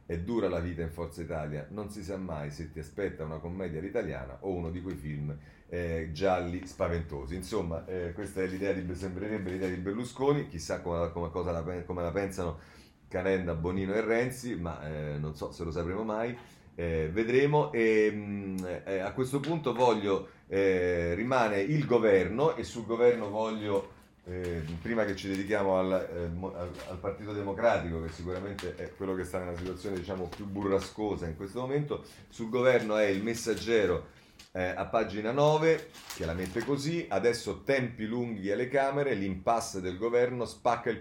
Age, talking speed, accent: 40-59, 175 wpm, native